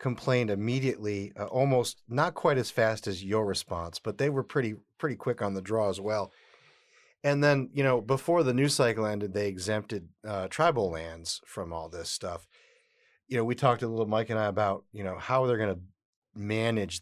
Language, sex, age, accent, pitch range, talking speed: English, male, 40-59, American, 100-130 Hz, 200 wpm